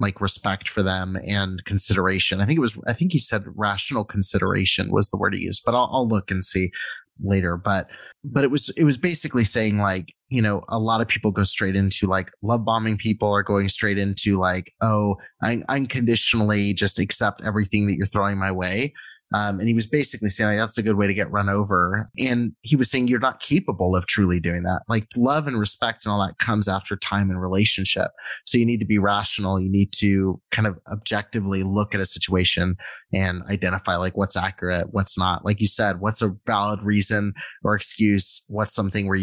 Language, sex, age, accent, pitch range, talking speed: English, male, 30-49, American, 95-110 Hz, 215 wpm